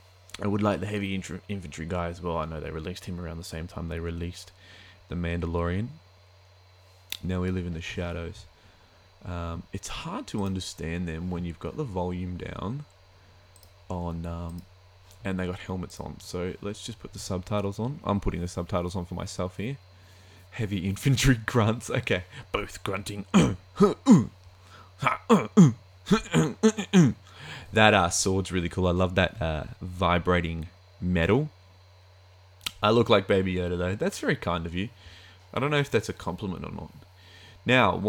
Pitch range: 90-100 Hz